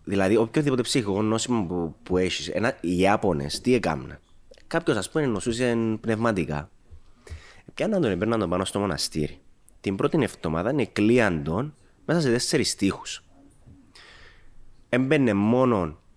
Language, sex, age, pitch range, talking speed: Greek, male, 20-39, 90-120 Hz, 125 wpm